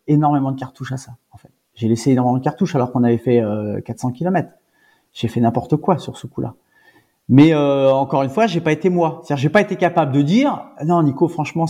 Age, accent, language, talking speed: 40-59, French, French, 235 wpm